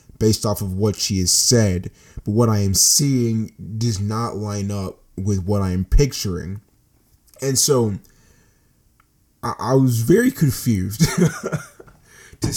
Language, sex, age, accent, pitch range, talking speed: English, male, 20-39, American, 95-120 Hz, 140 wpm